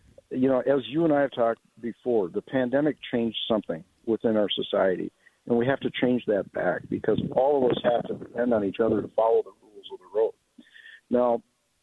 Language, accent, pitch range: English, American, 110-135 Hz